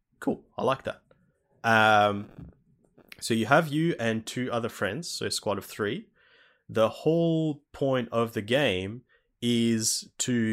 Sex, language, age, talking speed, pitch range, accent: male, English, 20-39, 150 wpm, 100-115 Hz, Australian